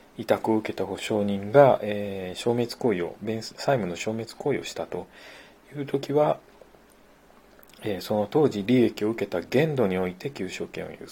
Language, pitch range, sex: Japanese, 105-135 Hz, male